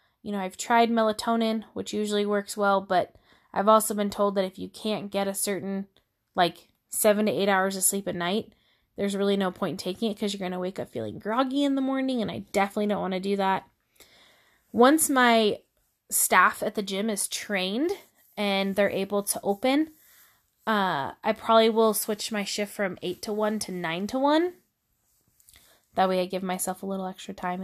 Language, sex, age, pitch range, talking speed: English, female, 20-39, 190-230 Hz, 200 wpm